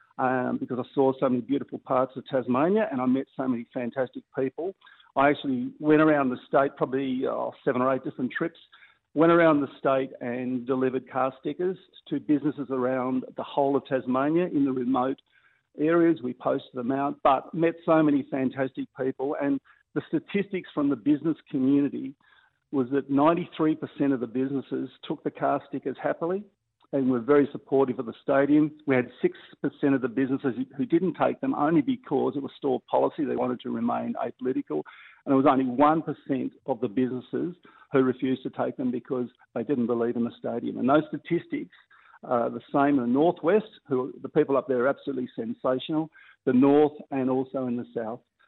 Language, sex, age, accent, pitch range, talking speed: English, male, 50-69, Australian, 130-160 Hz, 185 wpm